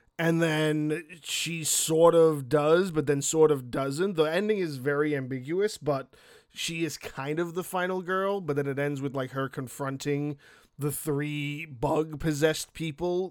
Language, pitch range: English, 140-165 Hz